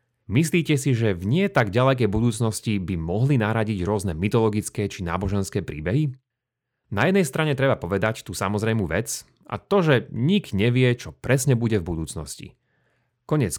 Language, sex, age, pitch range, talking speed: Slovak, male, 30-49, 100-135 Hz, 155 wpm